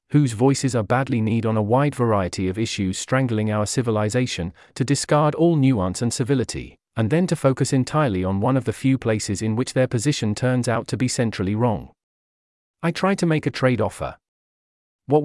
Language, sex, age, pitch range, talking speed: English, male, 40-59, 110-140 Hz, 195 wpm